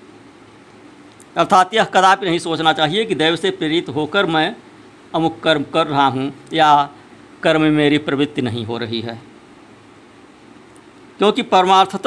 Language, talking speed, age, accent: Hindi, 135 wpm, 50-69, native